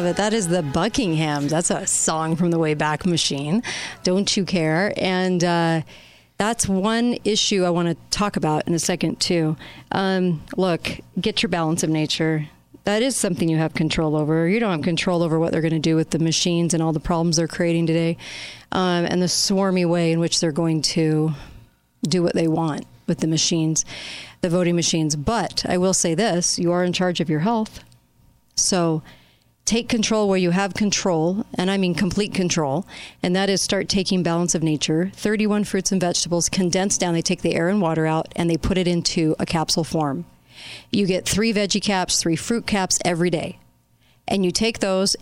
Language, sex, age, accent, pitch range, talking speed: English, female, 40-59, American, 160-190 Hz, 200 wpm